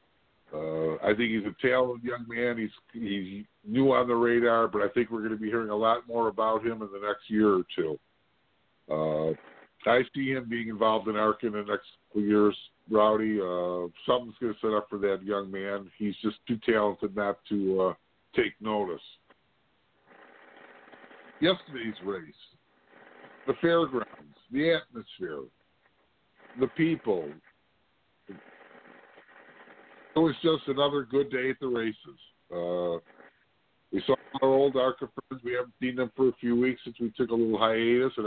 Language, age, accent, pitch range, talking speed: English, 50-69, American, 105-125 Hz, 165 wpm